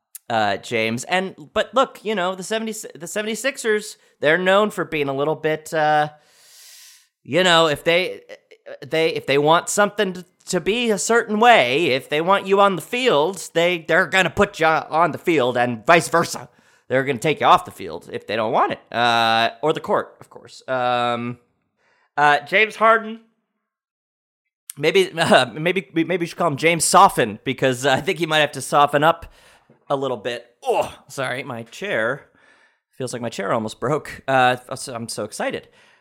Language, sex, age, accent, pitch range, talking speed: English, male, 30-49, American, 130-210 Hz, 185 wpm